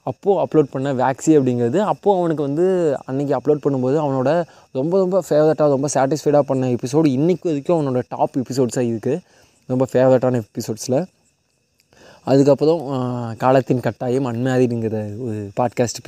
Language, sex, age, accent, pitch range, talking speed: Tamil, male, 20-39, native, 130-160 Hz, 125 wpm